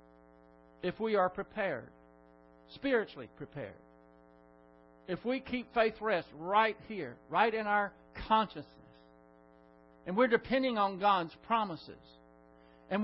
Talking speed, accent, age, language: 110 wpm, American, 60-79, English